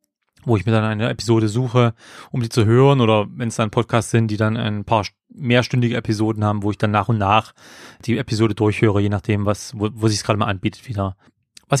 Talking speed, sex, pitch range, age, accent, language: 230 wpm, male, 110-130 Hz, 30-49, German, German